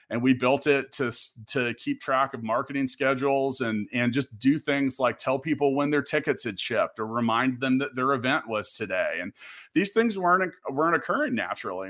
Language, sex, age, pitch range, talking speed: English, male, 40-59, 120-145 Hz, 195 wpm